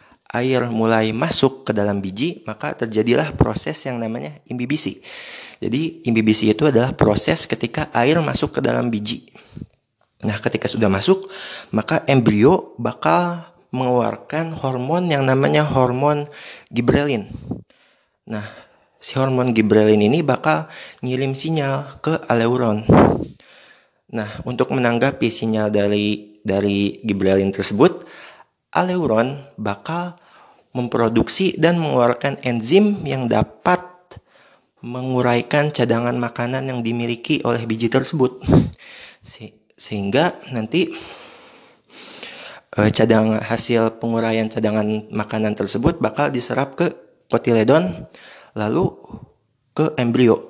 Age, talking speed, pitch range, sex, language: 30-49, 100 wpm, 110-140 Hz, male, Indonesian